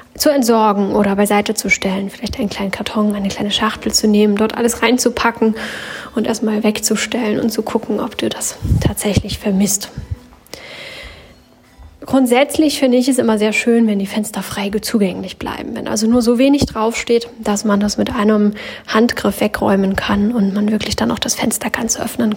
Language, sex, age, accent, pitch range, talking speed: German, female, 10-29, German, 205-235 Hz, 175 wpm